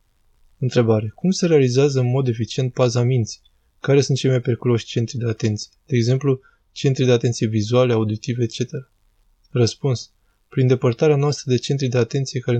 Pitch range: 110-135 Hz